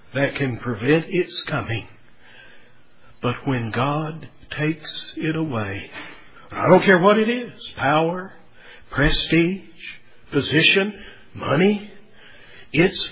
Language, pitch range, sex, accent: English, 155-230 Hz, male, American